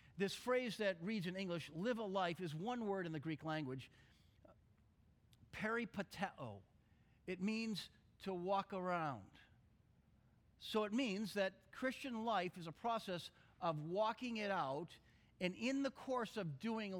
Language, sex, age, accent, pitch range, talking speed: English, male, 50-69, American, 155-250 Hz, 145 wpm